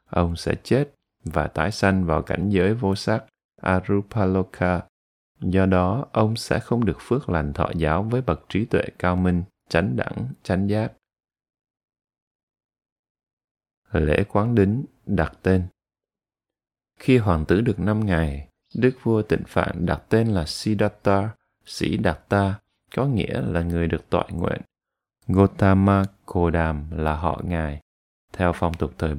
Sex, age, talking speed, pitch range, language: male, 20-39, 145 wpm, 80-100 Hz, Vietnamese